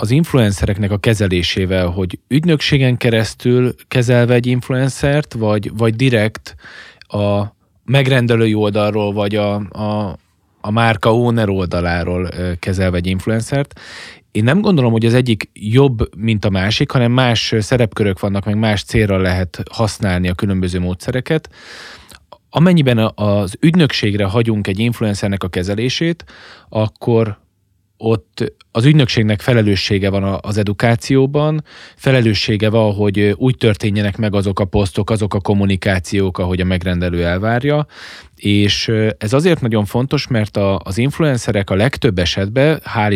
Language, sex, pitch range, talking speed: Hungarian, male, 100-125 Hz, 130 wpm